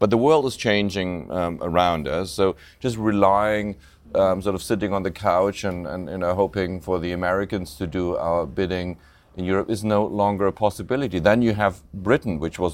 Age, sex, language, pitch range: 40-59, male, English, 85-100 Hz